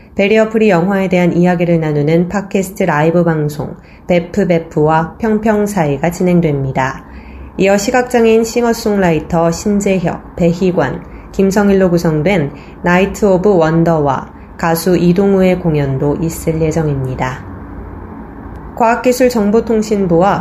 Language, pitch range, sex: Korean, 165-205 Hz, female